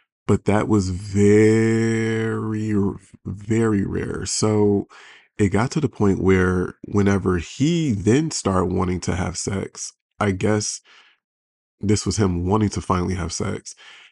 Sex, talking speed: male, 130 wpm